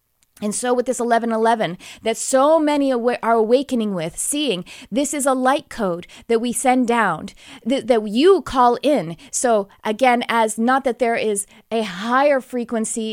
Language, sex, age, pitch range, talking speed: English, female, 30-49, 210-255 Hz, 165 wpm